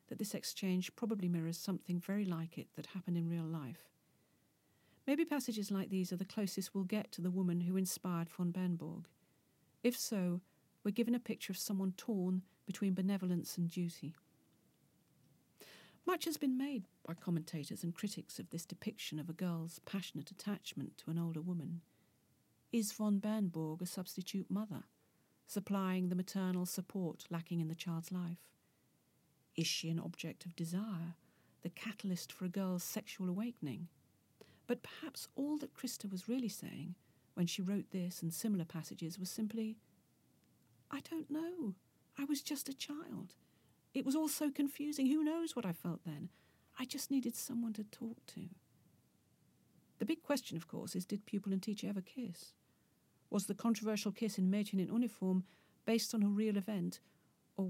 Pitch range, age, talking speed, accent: 175-220 Hz, 50-69, 165 wpm, British